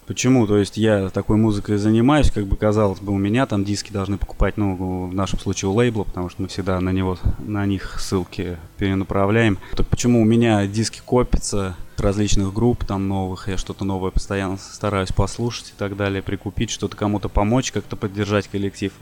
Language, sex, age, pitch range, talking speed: Russian, male, 20-39, 95-110 Hz, 185 wpm